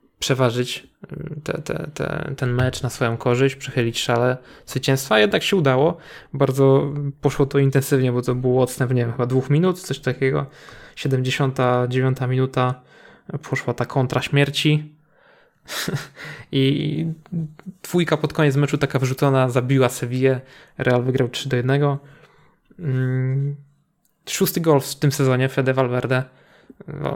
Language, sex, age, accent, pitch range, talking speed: Polish, male, 20-39, native, 125-145 Hz, 125 wpm